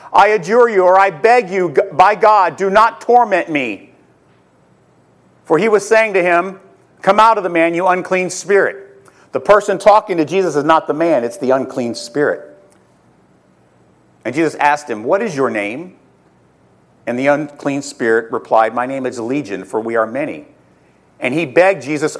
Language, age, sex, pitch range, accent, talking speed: English, 50-69, male, 160-230 Hz, American, 175 wpm